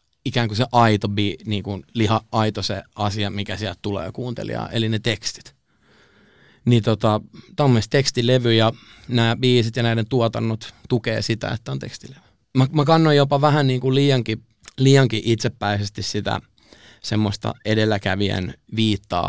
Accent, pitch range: native, 105-130 Hz